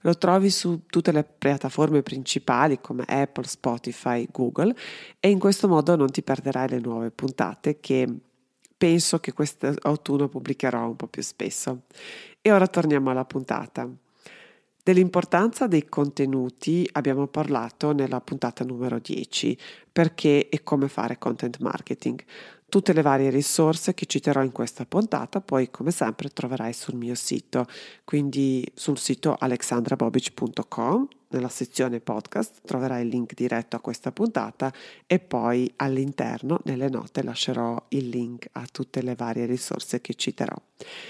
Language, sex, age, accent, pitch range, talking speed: Italian, female, 40-59, native, 125-170 Hz, 140 wpm